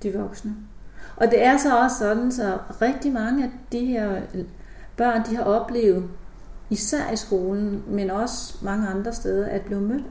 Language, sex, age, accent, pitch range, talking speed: Danish, female, 40-59, native, 190-215 Hz, 180 wpm